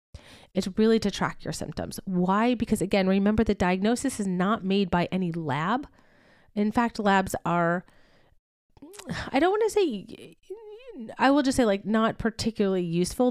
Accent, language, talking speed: American, English, 160 wpm